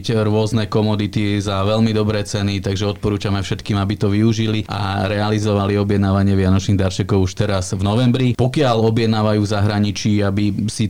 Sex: male